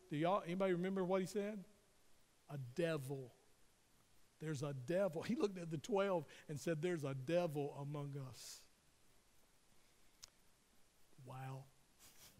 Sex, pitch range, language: male, 145-180 Hz, English